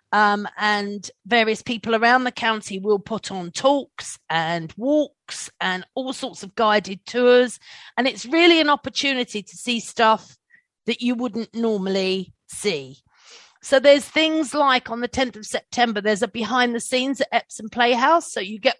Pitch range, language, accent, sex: 210-255 Hz, English, British, female